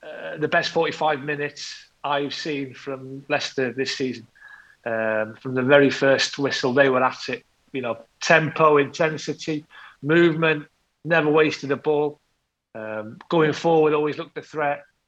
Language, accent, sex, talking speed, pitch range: English, British, male, 145 wpm, 145-165 Hz